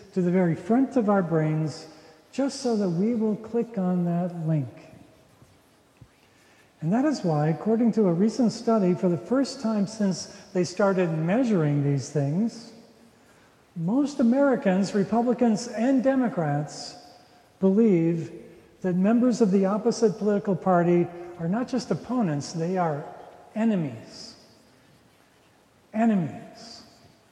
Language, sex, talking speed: English, male, 125 wpm